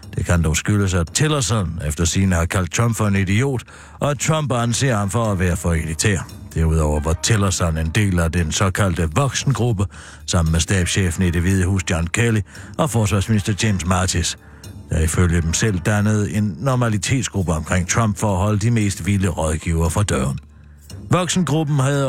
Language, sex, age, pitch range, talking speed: Danish, male, 60-79, 85-115 Hz, 180 wpm